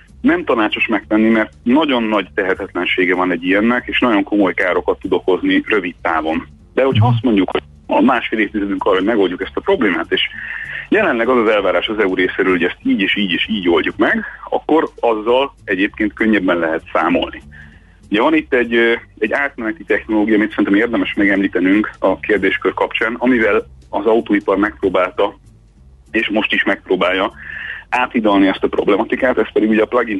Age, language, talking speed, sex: 30-49, Hungarian, 170 wpm, male